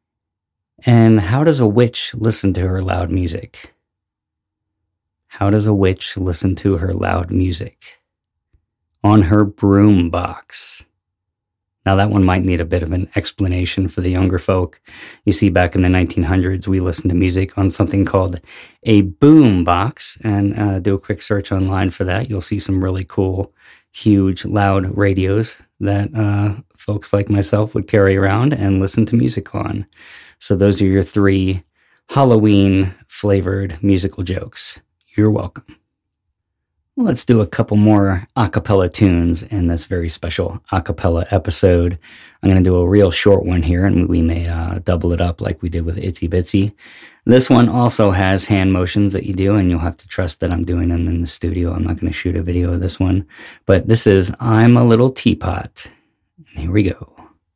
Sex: male